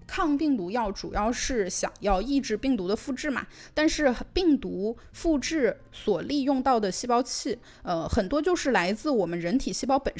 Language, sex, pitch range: Chinese, female, 200-305 Hz